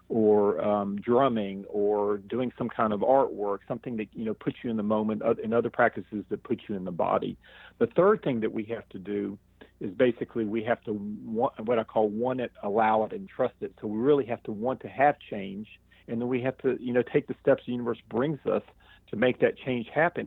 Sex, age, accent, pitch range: male, 40-59, American, 105-120 Hz